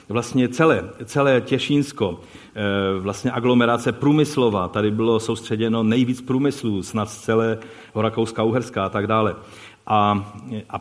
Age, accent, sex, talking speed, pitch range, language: 40-59, native, male, 115 wpm, 115-150 Hz, Czech